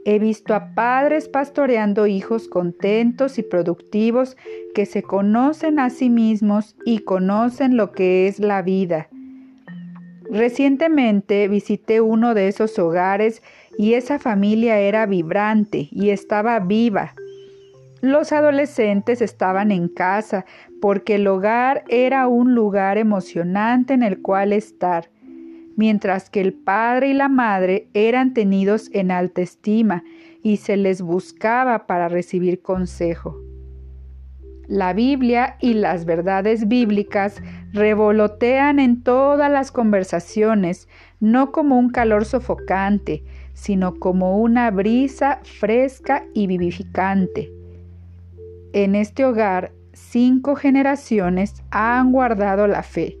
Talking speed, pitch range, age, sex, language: 115 wpm, 190-250 Hz, 40-59, female, Spanish